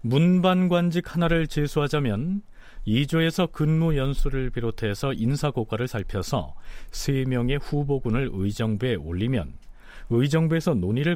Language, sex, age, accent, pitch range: Korean, male, 40-59, native, 105-160 Hz